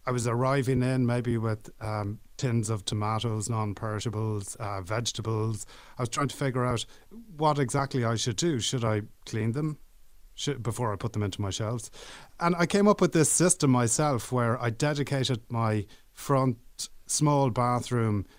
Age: 30-49